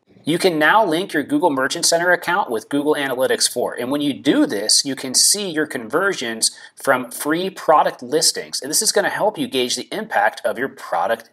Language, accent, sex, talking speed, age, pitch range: English, American, male, 205 wpm, 30-49, 130-210 Hz